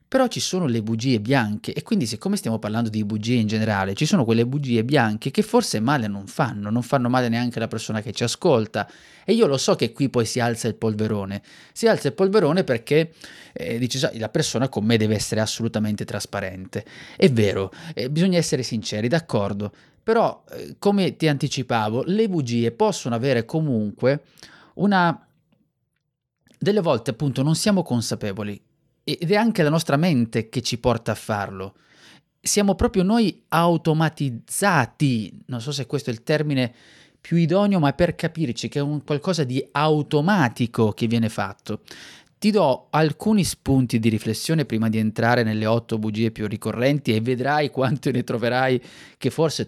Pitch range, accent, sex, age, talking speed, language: 115-160 Hz, native, male, 30-49, 170 wpm, Italian